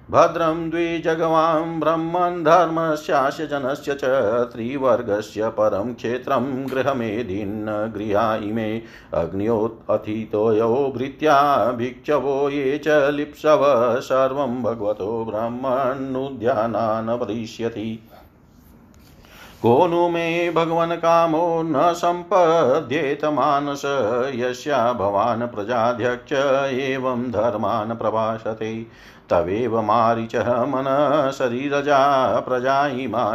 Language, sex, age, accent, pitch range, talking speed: Hindi, male, 50-69, native, 115-150 Hz, 55 wpm